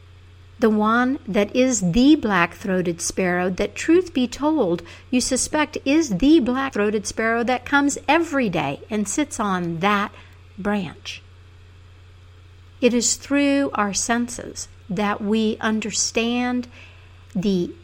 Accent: American